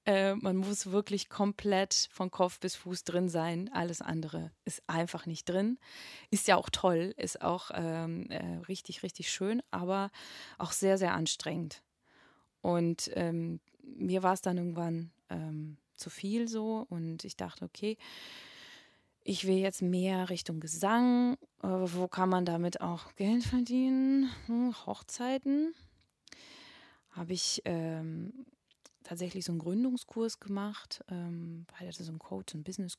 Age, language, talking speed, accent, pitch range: 20-39, German, 145 wpm, German, 170-215 Hz